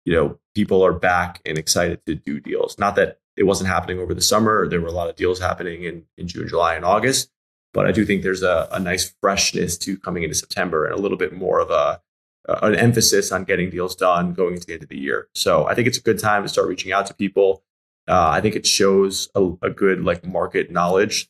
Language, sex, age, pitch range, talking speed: English, male, 20-39, 90-105 Hz, 250 wpm